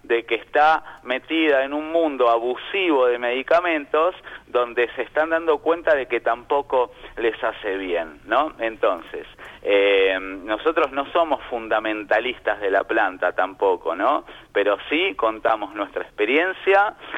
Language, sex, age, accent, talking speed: Spanish, male, 30-49, Argentinian, 135 wpm